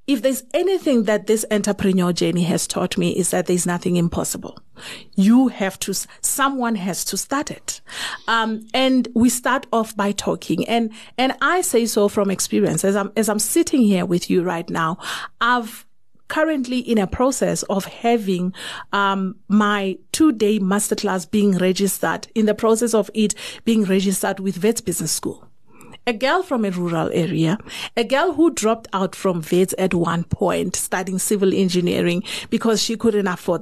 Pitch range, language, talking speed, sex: 190-245 Hz, English, 170 wpm, female